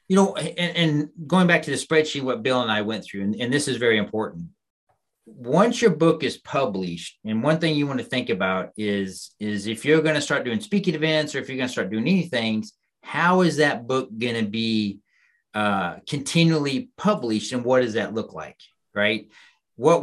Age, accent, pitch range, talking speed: 40-59, American, 115-155 Hz, 215 wpm